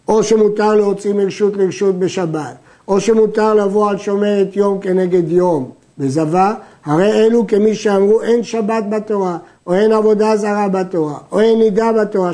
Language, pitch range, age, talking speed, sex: Hebrew, 180-225 Hz, 50-69, 150 wpm, male